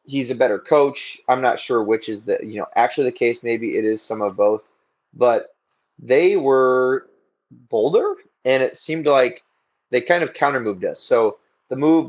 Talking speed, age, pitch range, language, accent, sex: 190 wpm, 20-39, 110-135 Hz, English, American, male